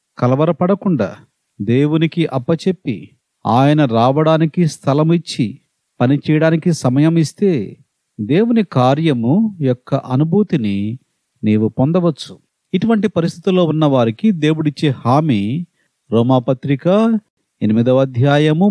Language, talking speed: Telugu, 75 wpm